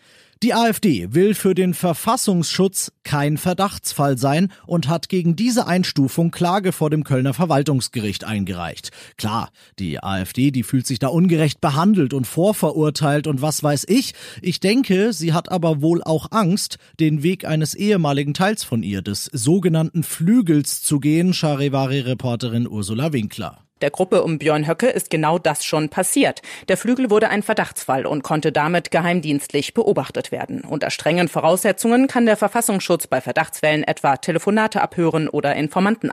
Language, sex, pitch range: German, male, 145-190 Hz